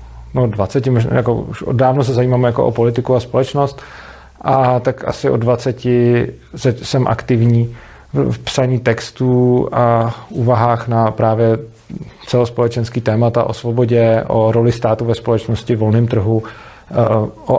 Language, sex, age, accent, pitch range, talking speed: Czech, male, 40-59, native, 110-125 Hz, 140 wpm